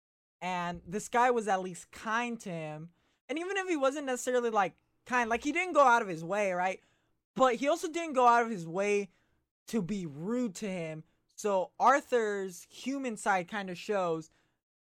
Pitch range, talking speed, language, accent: 165-235 Hz, 190 wpm, English, American